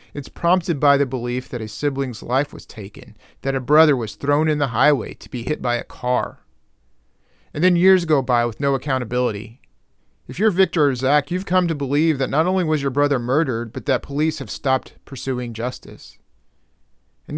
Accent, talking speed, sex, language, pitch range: American, 195 wpm, male, English, 120-150 Hz